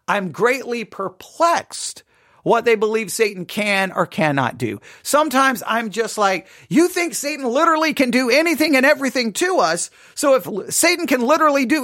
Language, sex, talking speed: English, male, 160 wpm